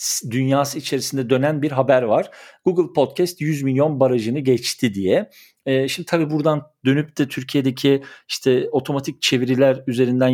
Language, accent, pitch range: Turkish, native, 130-175 Hz